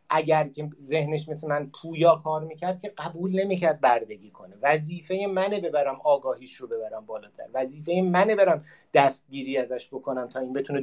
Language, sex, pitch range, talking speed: Persian, male, 130-165 Hz, 160 wpm